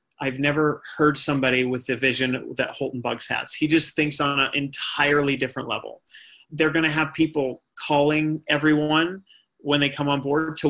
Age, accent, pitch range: 30-49, American, 135-155 Hz